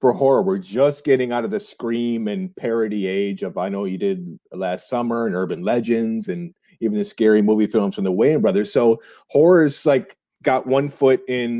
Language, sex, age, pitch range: English, male, 30-49, 110-170 Hz